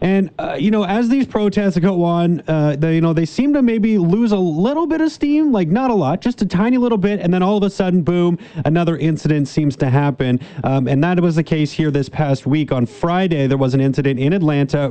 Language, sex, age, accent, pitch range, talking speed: English, male, 30-49, American, 140-185 Hz, 240 wpm